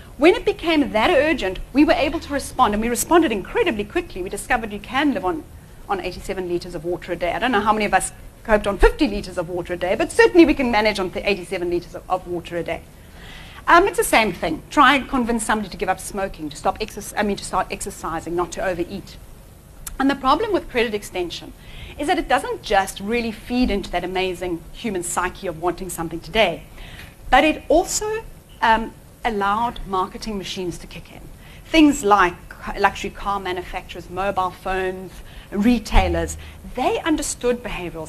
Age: 30-49